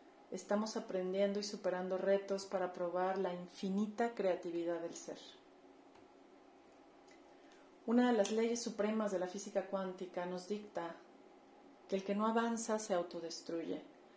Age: 40-59